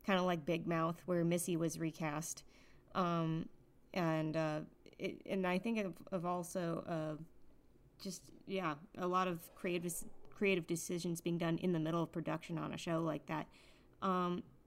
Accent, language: American, English